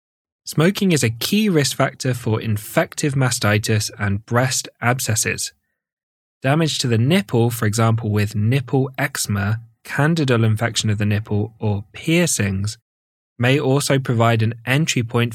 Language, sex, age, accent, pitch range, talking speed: English, male, 20-39, British, 105-135 Hz, 135 wpm